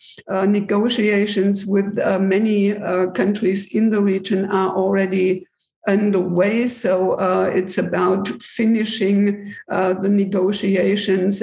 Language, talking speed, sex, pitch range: French, 110 wpm, female, 195-220 Hz